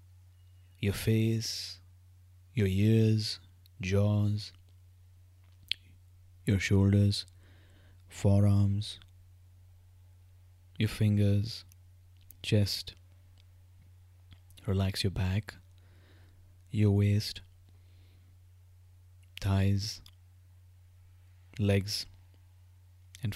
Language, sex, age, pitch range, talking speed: English, male, 20-39, 90-105 Hz, 50 wpm